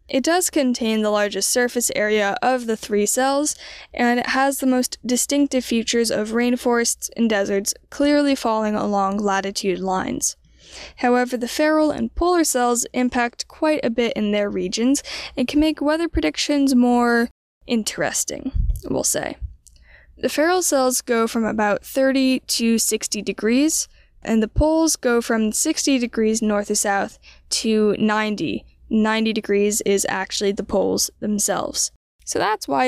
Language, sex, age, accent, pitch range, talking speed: English, female, 10-29, American, 215-270 Hz, 150 wpm